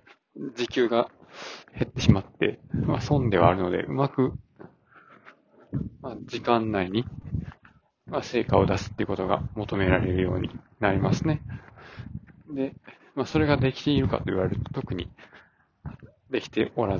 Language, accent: Japanese, native